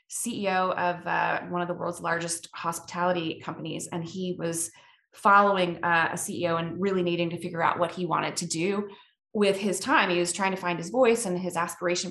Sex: female